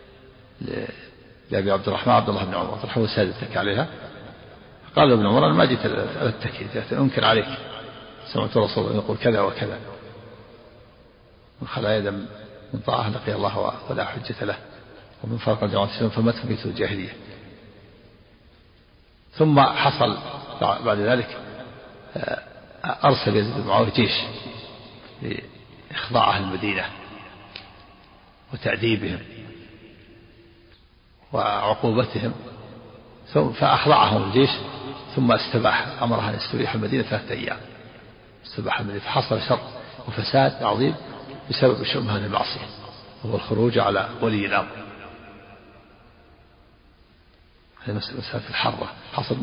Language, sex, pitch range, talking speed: Arabic, male, 100-125 Hz, 95 wpm